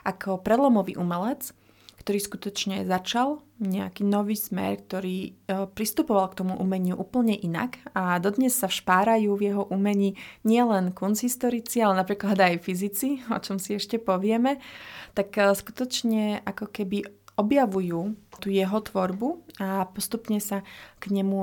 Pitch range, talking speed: 190-210 Hz, 135 wpm